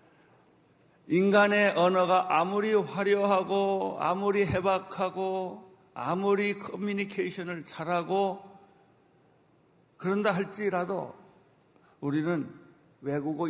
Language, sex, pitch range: Korean, male, 155-200 Hz